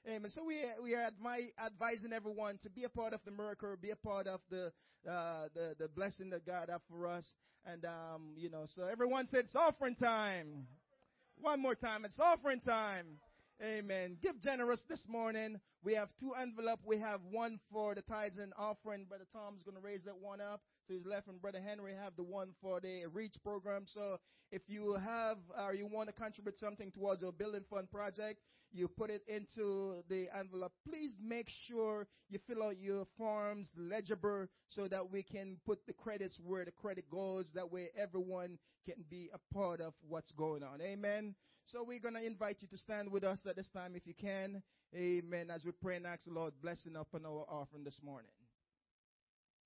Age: 20-39